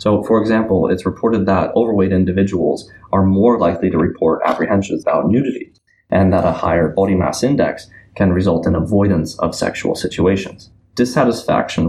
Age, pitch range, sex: 20-39, 85-105 Hz, male